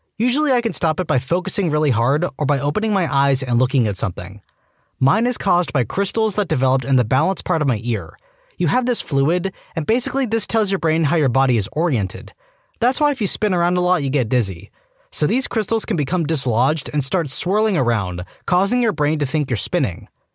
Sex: male